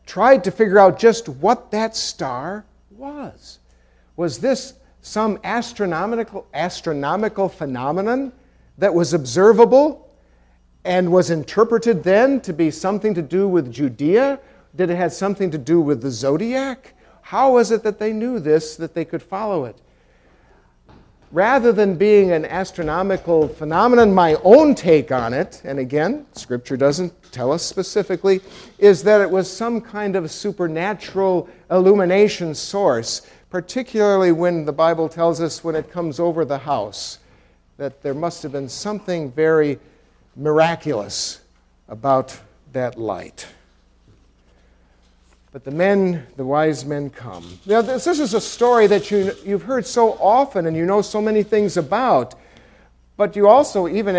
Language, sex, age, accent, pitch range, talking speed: English, male, 50-69, American, 145-205 Hz, 145 wpm